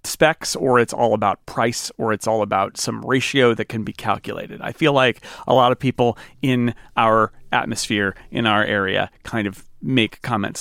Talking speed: 185 wpm